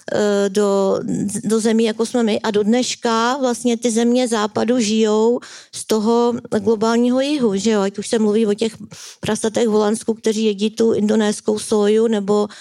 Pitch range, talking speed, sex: 205-225 Hz, 165 wpm, female